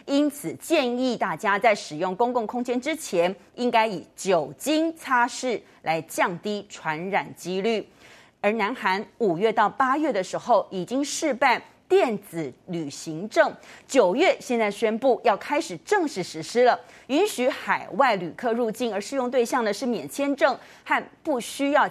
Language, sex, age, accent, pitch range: Chinese, female, 30-49, native, 185-265 Hz